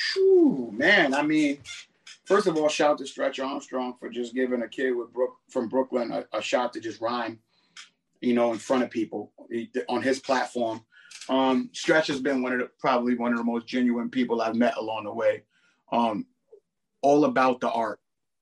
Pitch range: 125-185 Hz